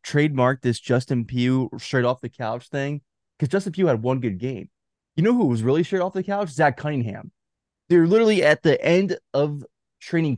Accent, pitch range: American, 110-140 Hz